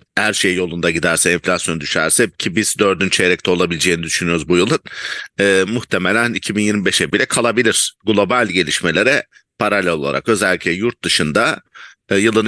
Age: 50-69